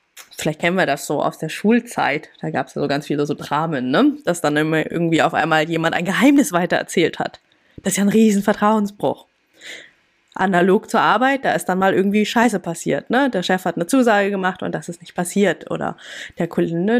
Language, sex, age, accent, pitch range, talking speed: German, female, 20-39, German, 170-225 Hz, 210 wpm